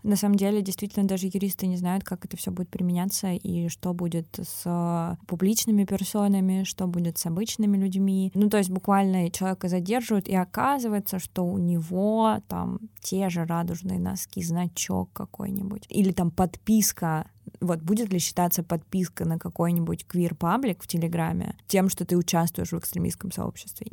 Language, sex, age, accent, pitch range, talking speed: Russian, female, 20-39, native, 170-195 Hz, 155 wpm